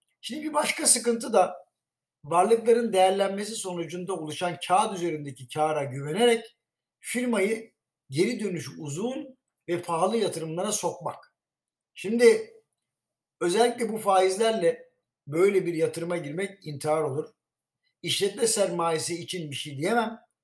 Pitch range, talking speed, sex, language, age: 160-215 Hz, 110 wpm, male, Turkish, 60-79